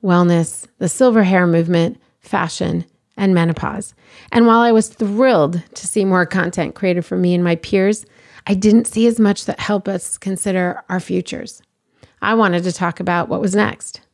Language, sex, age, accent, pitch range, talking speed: English, female, 30-49, American, 180-215 Hz, 180 wpm